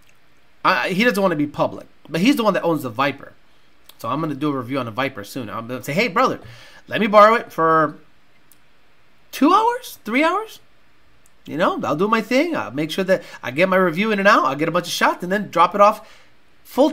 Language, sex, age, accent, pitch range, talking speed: English, male, 30-49, American, 150-250 Hz, 245 wpm